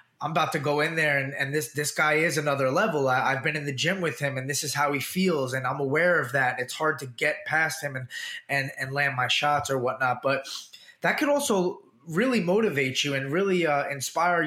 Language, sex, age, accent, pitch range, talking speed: English, male, 20-39, American, 135-165 Hz, 240 wpm